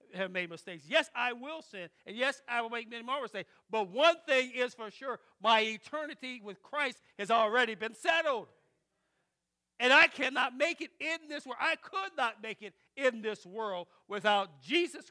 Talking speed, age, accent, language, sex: 185 wpm, 50-69, American, English, male